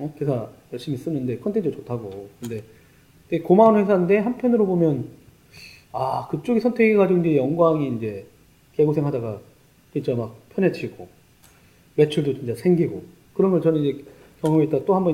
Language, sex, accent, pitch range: Korean, male, native, 130-175 Hz